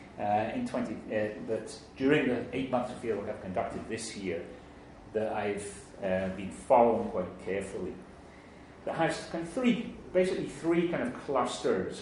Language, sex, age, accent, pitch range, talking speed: English, male, 40-59, British, 95-140 Hz, 160 wpm